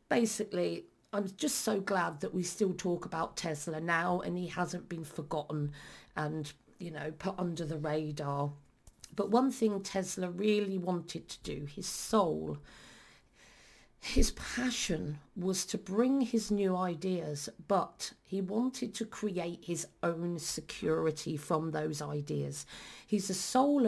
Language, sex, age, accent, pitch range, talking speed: English, female, 40-59, British, 165-210 Hz, 140 wpm